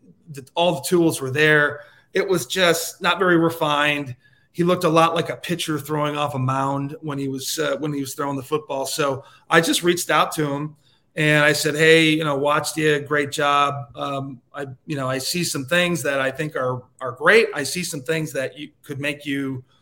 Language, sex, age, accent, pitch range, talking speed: English, male, 30-49, American, 135-160 Hz, 220 wpm